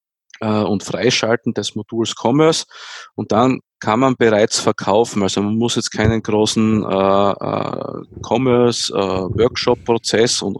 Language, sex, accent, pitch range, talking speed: German, male, Austrian, 105-125 Hz, 125 wpm